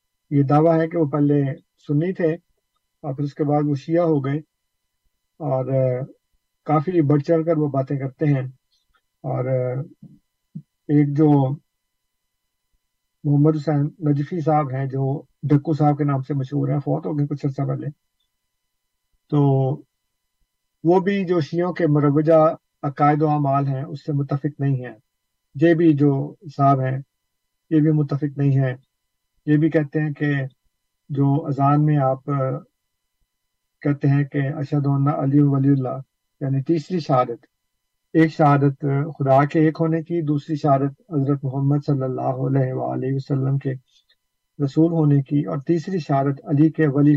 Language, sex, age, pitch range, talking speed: Urdu, male, 50-69, 135-155 Hz, 155 wpm